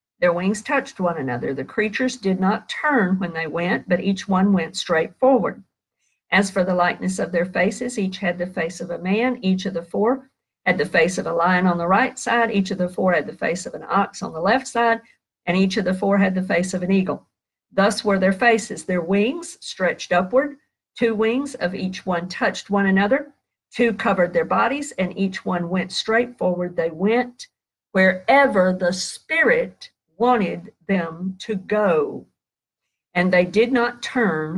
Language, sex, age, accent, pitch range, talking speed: English, female, 50-69, American, 185-235 Hz, 195 wpm